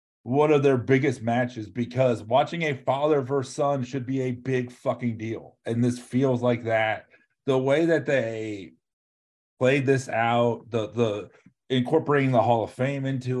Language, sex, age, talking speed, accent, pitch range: English, male, 40-59, 165 wpm, American, 110-135 Hz